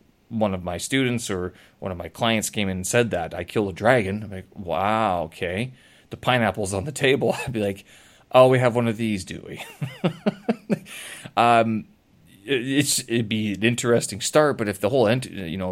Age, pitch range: 20-39, 95-115 Hz